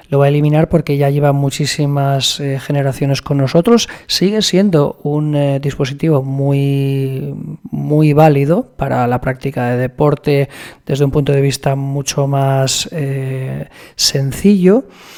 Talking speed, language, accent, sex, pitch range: 135 wpm, English, Spanish, male, 135-150 Hz